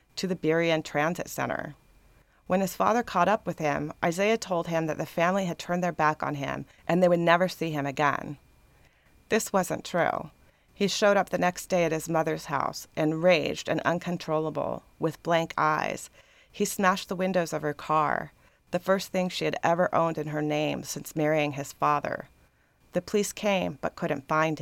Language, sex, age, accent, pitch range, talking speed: English, female, 30-49, American, 155-180 Hz, 190 wpm